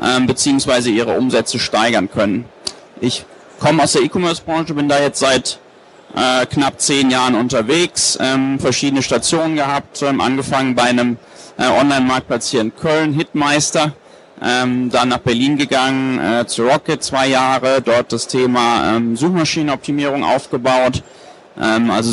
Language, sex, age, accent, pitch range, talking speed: German, male, 30-49, German, 120-135 Hz, 115 wpm